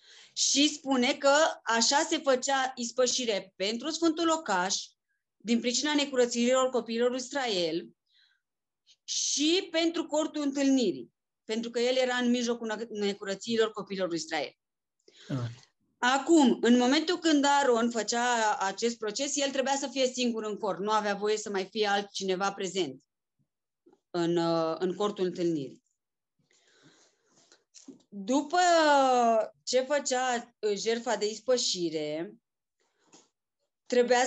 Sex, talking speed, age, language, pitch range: female, 110 wpm, 30-49, Romanian, 210-280 Hz